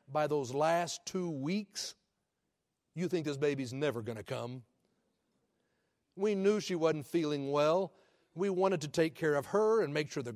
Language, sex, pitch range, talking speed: English, male, 135-180 Hz, 175 wpm